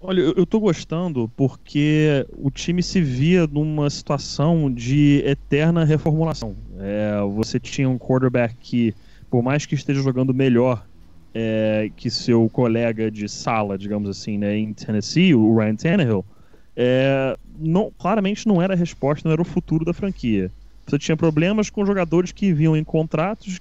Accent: Brazilian